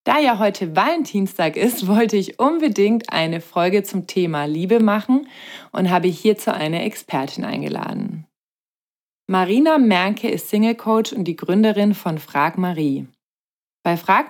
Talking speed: 140 wpm